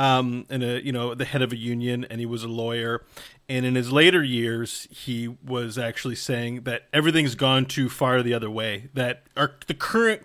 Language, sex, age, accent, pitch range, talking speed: English, male, 40-59, American, 125-155 Hz, 210 wpm